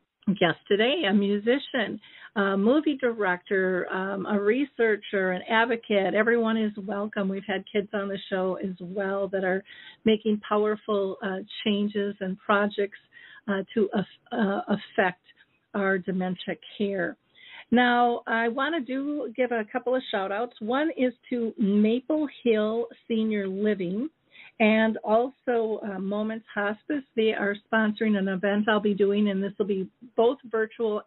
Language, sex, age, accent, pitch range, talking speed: English, female, 50-69, American, 200-235 Hz, 145 wpm